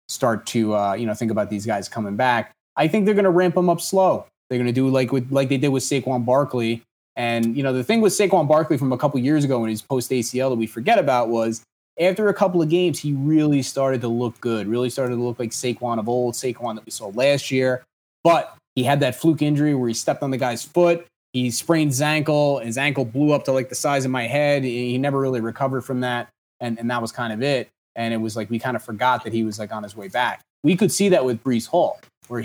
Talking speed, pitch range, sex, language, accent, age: 270 wpm, 115-135 Hz, male, English, American, 30-49